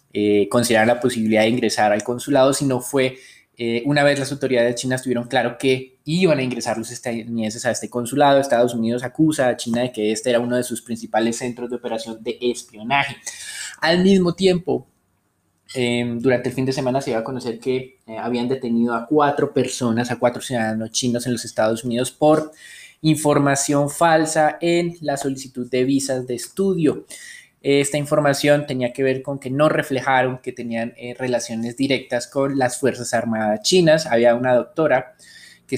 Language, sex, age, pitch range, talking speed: Spanish, male, 20-39, 120-140 Hz, 180 wpm